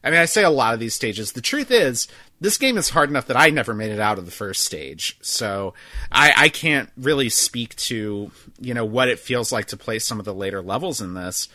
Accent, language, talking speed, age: American, English, 255 wpm, 30-49